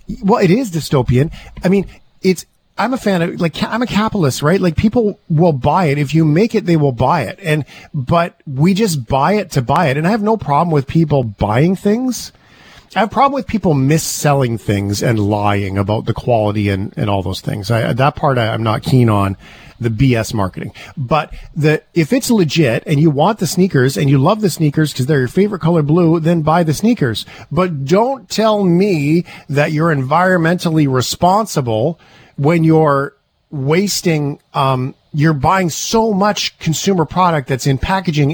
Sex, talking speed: male, 190 wpm